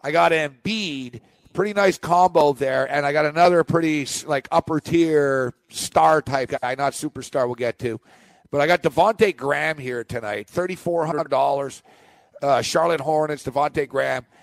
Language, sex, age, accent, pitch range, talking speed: English, male, 50-69, American, 140-170 Hz, 140 wpm